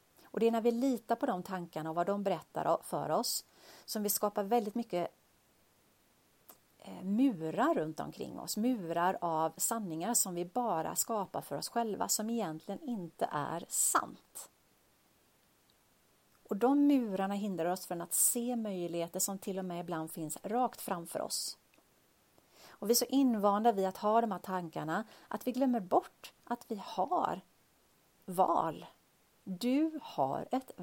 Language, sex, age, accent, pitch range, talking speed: Swedish, female, 30-49, native, 175-240 Hz, 155 wpm